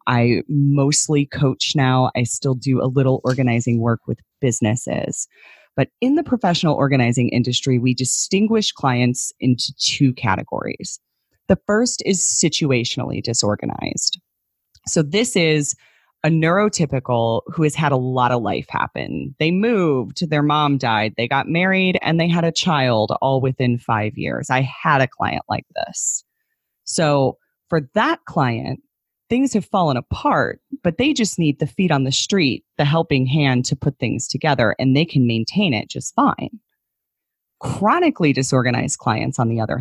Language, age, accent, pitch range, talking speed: English, 30-49, American, 125-165 Hz, 155 wpm